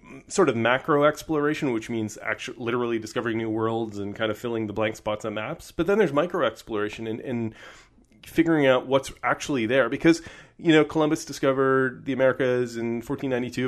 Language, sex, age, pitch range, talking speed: English, male, 30-49, 110-135 Hz, 180 wpm